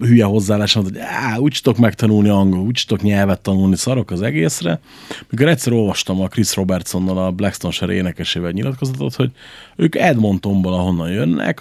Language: Hungarian